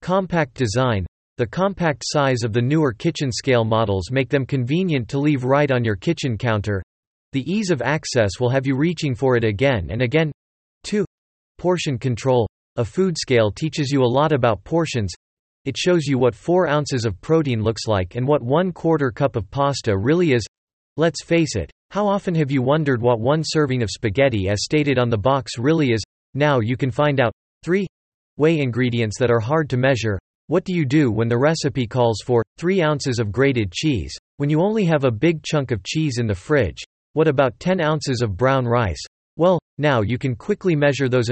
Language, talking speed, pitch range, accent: English, 200 wpm, 115-155 Hz, American